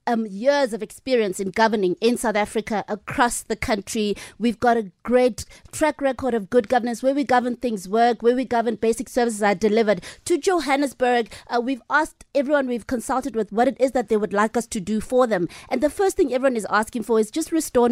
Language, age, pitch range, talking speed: English, 30-49, 220-260 Hz, 220 wpm